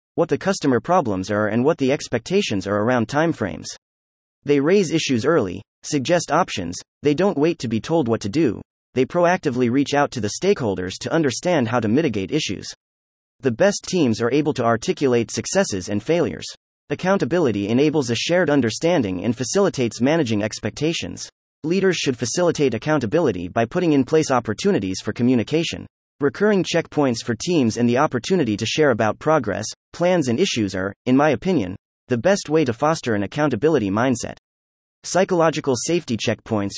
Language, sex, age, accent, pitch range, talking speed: English, male, 30-49, American, 110-160 Hz, 160 wpm